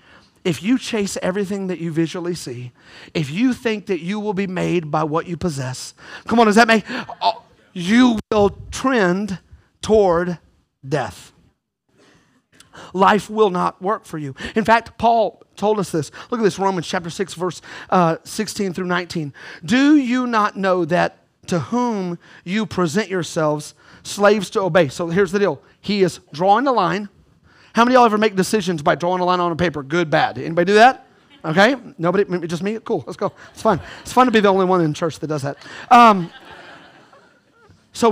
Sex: male